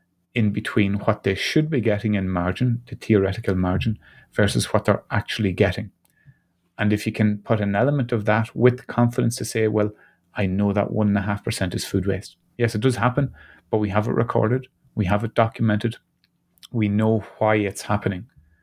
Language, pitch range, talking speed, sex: English, 100-120 Hz, 180 wpm, male